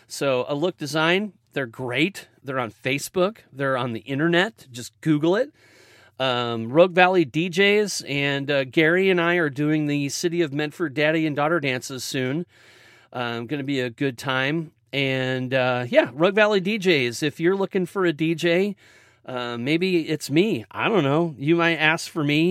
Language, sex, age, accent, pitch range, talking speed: English, male, 40-59, American, 140-175 Hz, 175 wpm